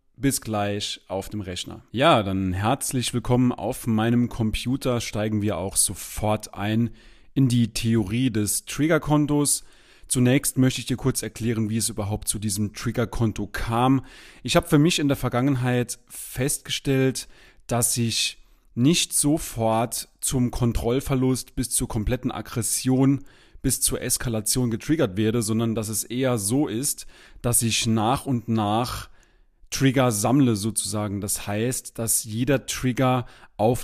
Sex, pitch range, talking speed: male, 110-125 Hz, 140 wpm